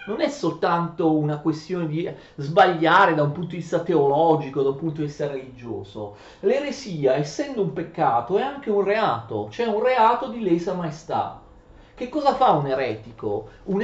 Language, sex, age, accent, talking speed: Italian, male, 40-59, native, 170 wpm